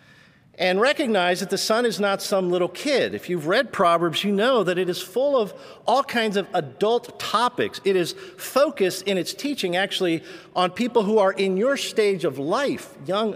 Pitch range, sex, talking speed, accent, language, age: 155-205 Hz, male, 195 wpm, American, English, 50-69